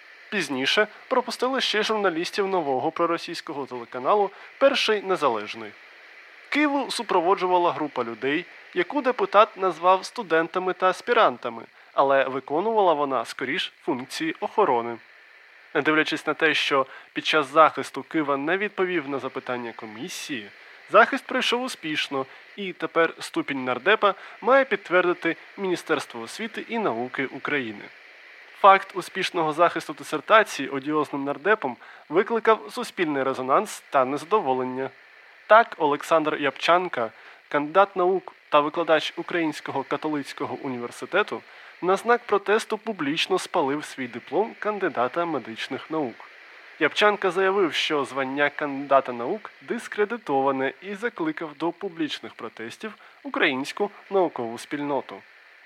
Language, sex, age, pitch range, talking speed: Ukrainian, male, 20-39, 140-210 Hz, 105 wpm